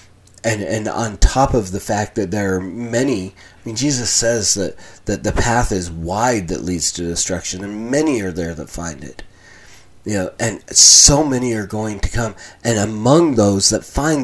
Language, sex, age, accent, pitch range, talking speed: English, male, 30-49, American, 95-115 Hz, 195 wpm